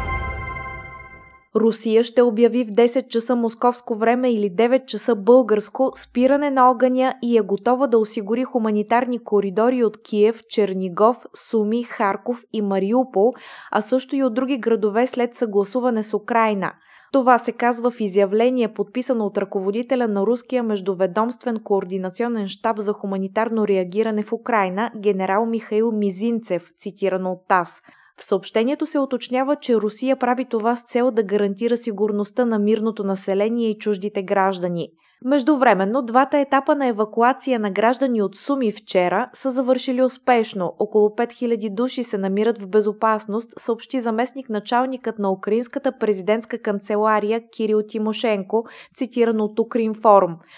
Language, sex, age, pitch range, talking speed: Bulgarian, female, 20-39, 205-245 Hz, 135 wpm